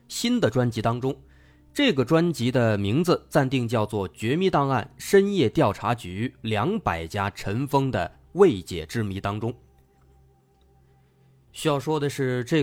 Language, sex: Chinese, male